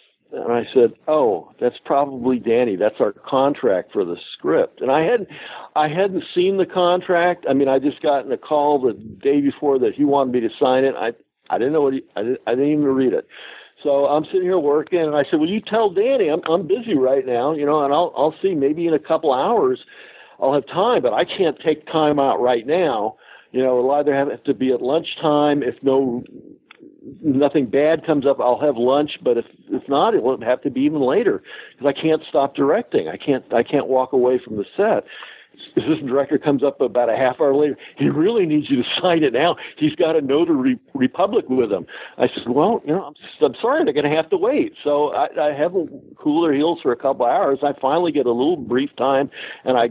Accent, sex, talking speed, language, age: American, male, 230 wpm, English, 60-79